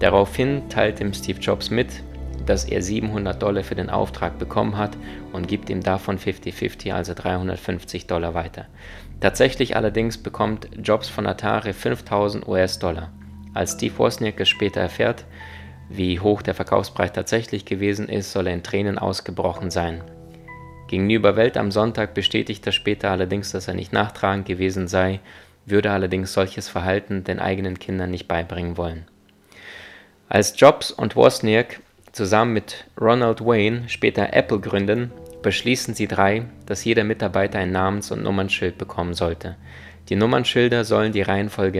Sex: male